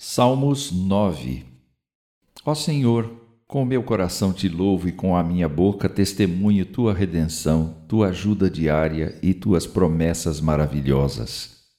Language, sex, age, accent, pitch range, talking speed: Portuguese, male, 60-79, Brazilian, 90-130 Hz, 120 wpm